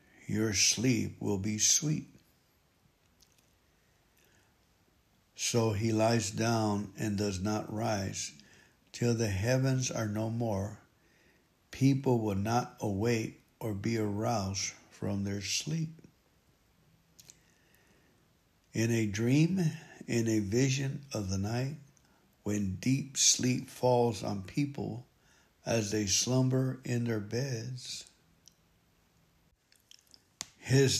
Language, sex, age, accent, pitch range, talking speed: English, male, 60-79, American, 105-130 Hz, 100 wpm